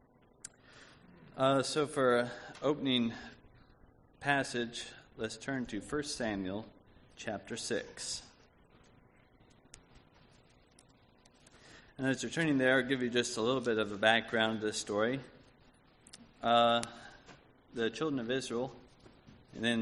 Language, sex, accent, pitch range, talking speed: English, male, American, 105-125 Hz, 120 wpm